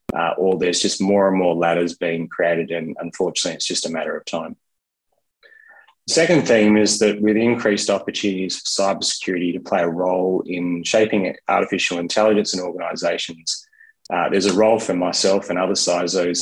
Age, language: 20-39, English